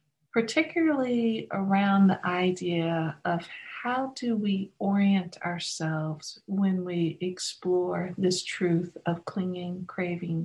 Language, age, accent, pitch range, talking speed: English, 50-69, American, 175-225 Hz, 105 wpm